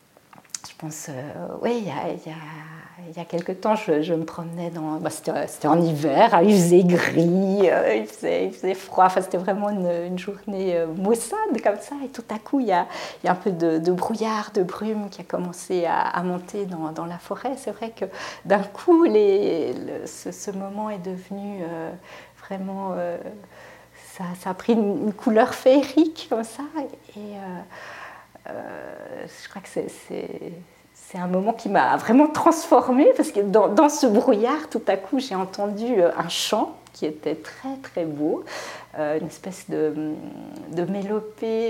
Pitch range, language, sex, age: 175-245 Hz, French, female, 50-69